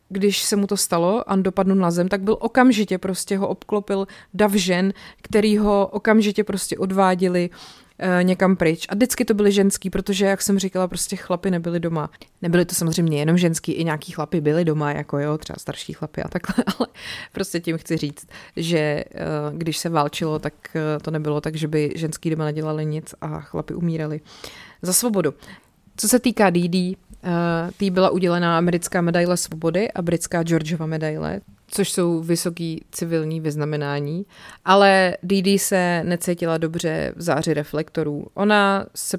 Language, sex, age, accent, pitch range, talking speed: Czech, female, 30-49, native, 165-195 Hz, 170 wpm